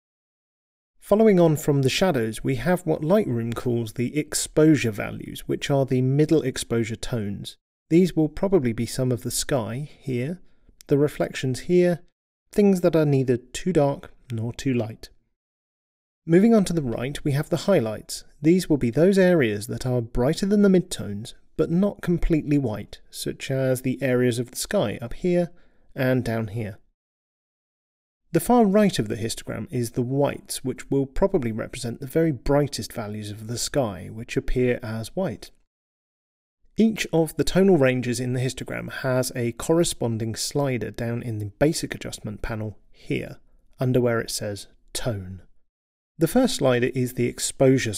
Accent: British